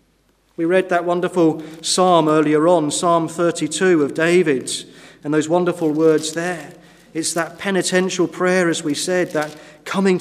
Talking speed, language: 145 wpm, English